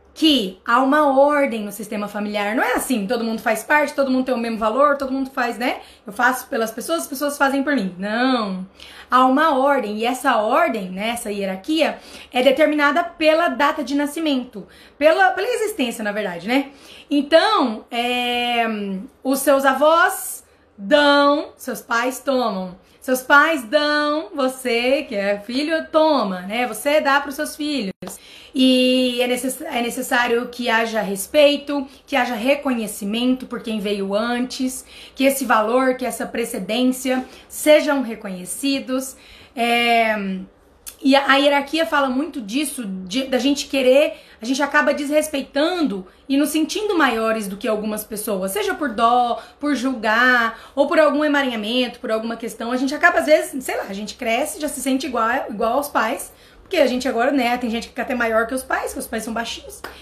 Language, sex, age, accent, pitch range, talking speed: Portuguese, female, 20-39, Brazilian, 230-285 Hz, 170 wpm